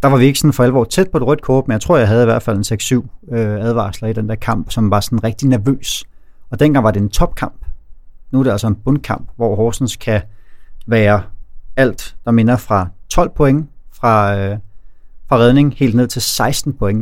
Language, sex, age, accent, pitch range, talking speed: Danish, male, 30-49, native, 105-125 Hz, 225 wpm